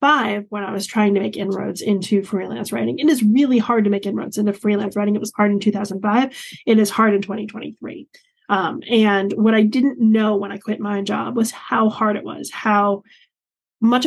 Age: 20-39